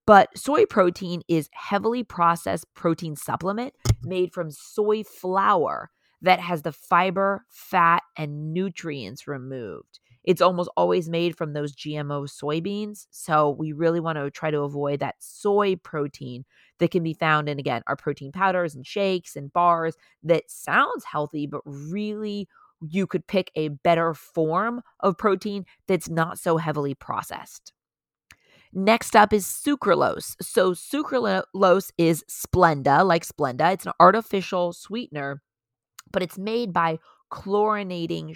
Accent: American